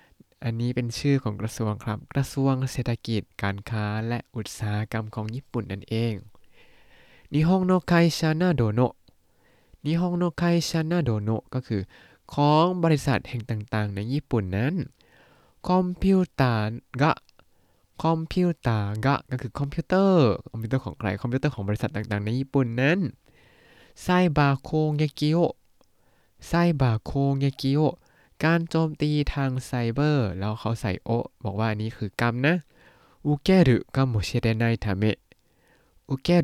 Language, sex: Thai, male